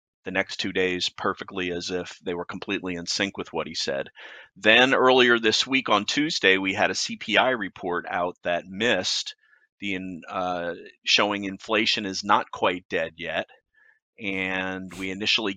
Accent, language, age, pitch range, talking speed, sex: American, English, 30-49, 100-120 Hz, 165 wpm, male